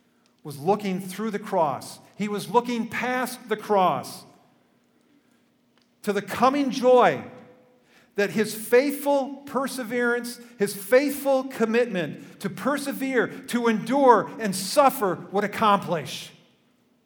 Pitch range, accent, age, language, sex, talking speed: 170-240 Hz, American, 50-69, English, male, 105 wpm